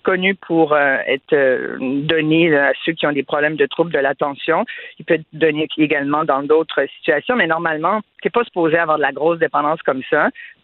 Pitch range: 155-200 Hz